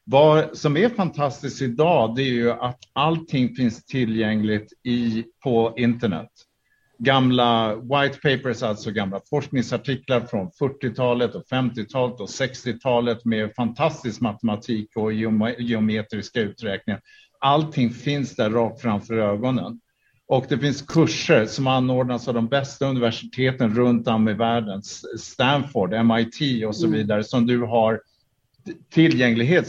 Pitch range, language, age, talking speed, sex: 115-145 Hz, Swedish, 50-69, 125 wpm, male